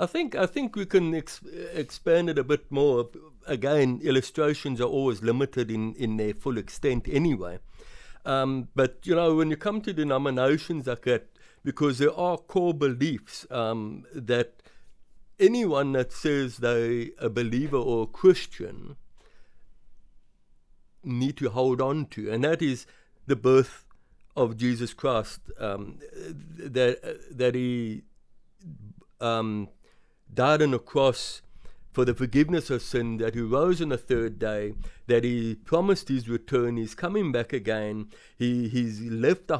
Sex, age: male, 60-79